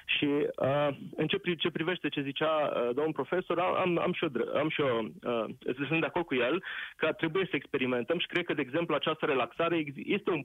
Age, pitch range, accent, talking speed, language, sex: 30-49, 140-175 Hz, native, 205 wpm, Romanian, male